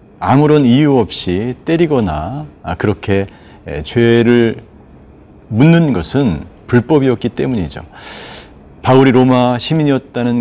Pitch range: 100-135 Hz